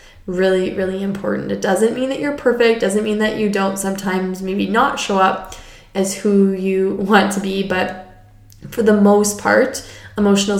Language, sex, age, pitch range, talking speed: English, female, 20-39, 190-210 Hz, 175 wpm